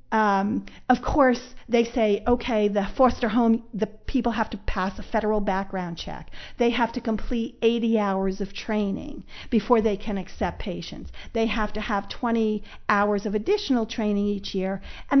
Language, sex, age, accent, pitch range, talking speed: English, female, 40-59, American, 205-270 Hz, 170 wpm